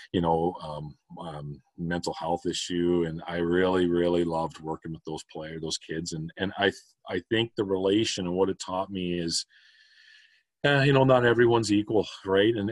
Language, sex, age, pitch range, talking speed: English, male, 40-59, 85-95 Hz, 185 wpm